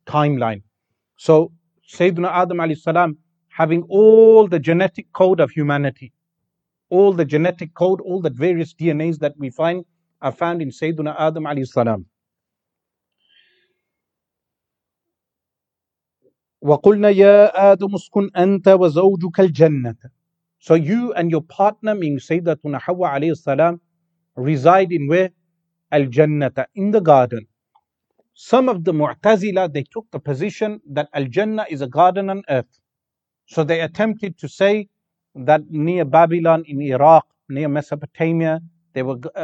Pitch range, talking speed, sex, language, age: 150-185 Hz, 115 wpm, male, English, 40-59